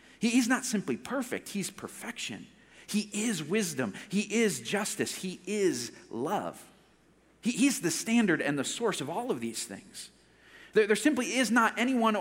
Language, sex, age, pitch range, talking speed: English, male, 40-59, 160-235 Hz, 155 wpm